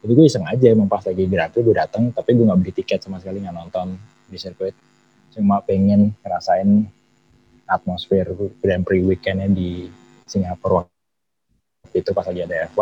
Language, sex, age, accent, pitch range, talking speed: Indonesian, male, 20-39, native, 90-105 Hz, 165 wpm